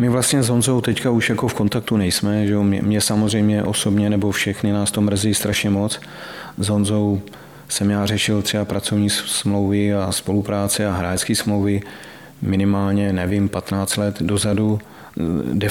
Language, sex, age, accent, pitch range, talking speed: Czech, male, 40-59, native, 100-110 Hz, 155 wpm